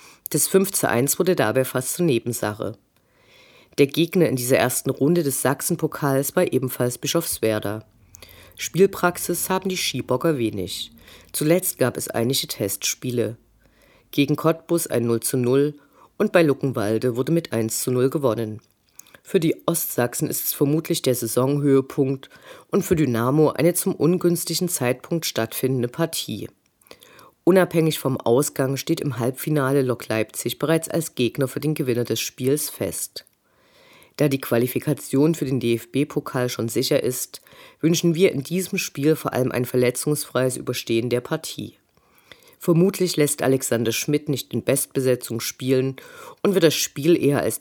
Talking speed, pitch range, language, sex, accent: 145 wpm, 120-165 Hz, German, female, German